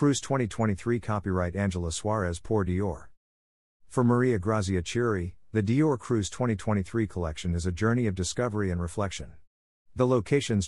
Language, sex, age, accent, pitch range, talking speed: English, male, 50-69, American, 90-115 Hz, 140 wpm